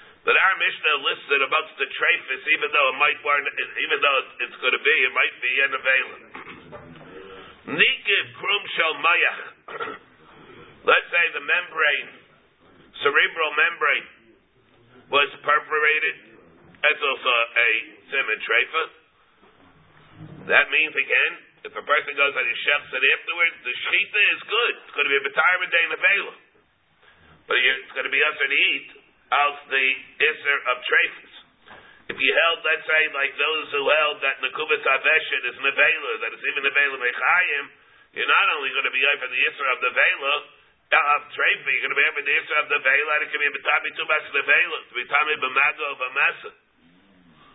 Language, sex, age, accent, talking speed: English, male, 50-69, American, 170 wpm